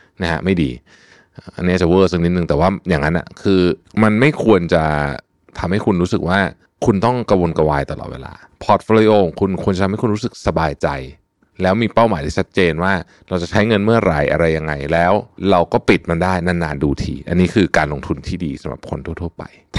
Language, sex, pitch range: Thai, male, 80-110 Hz